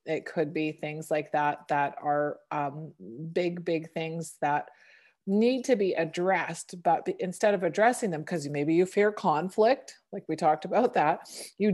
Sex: female